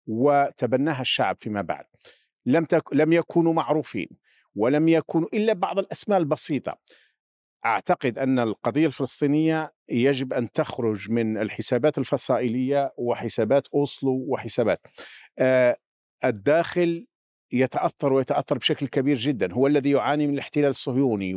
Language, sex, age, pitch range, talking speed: Arabic, male, 50-69, 125-150 Hz, 115 wpm